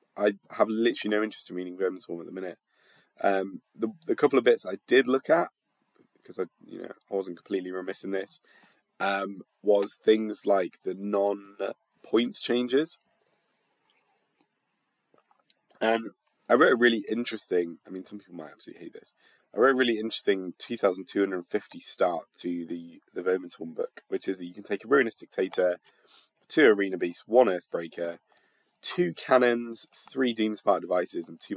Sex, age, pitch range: male, 20-39, 95-125 Hz